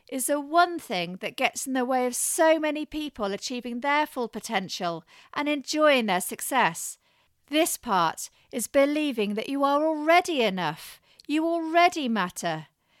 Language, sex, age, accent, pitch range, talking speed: English, female, 40-59, British, 205-290 Hz, 150 wpm